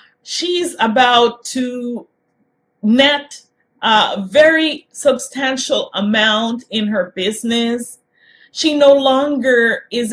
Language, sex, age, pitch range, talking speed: English, female, 30-49, 235-275 Hz, 90 wpm